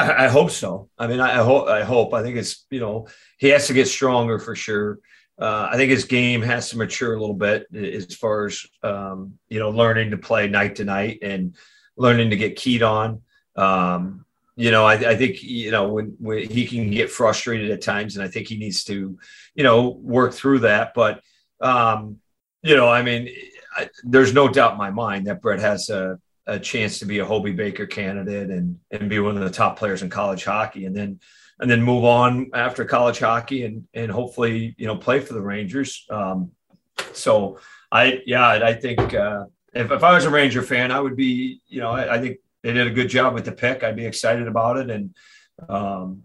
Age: 40-59